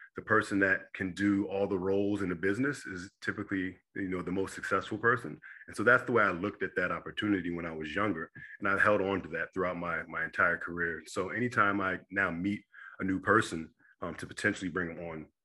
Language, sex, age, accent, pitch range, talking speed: English, male, 40-59, American, 85-100 Hz, 220 wpm